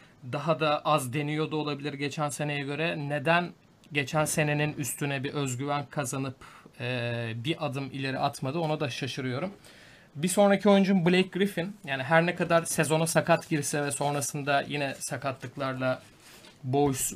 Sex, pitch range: male, 145-175 Hz